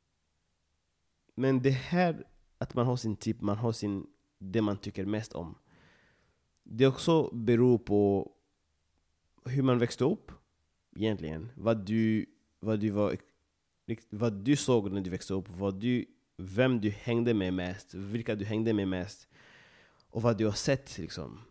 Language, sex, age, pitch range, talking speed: English, male, 30-49, 90-120 Hz, 155 wpm